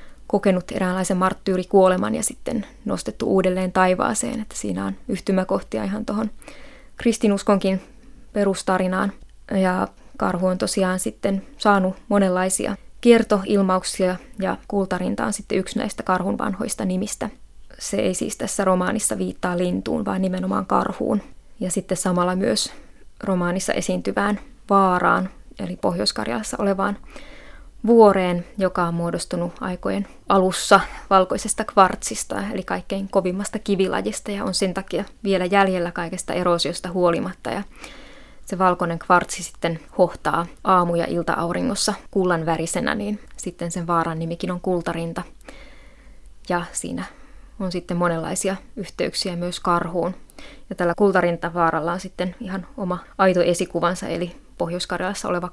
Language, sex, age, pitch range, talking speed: Finnish, female, 20-39, 180-205 Hz, 120 wpm